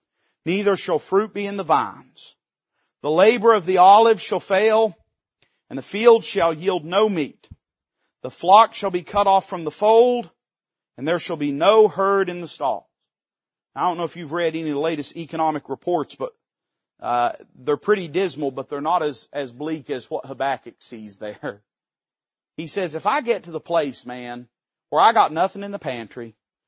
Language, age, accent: English, 40-59, American